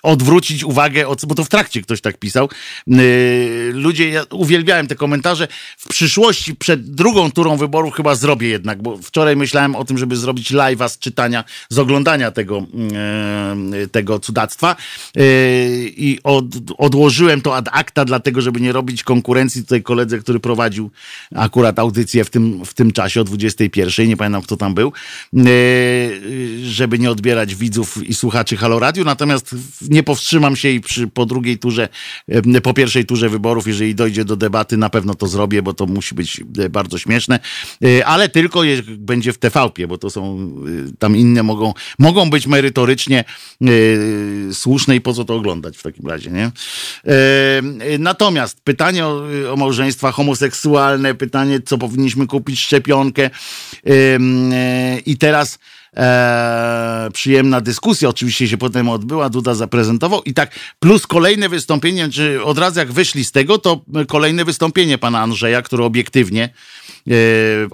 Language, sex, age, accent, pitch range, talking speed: Polish, male, 50-69, native, 115-145 Hz, 150 wpm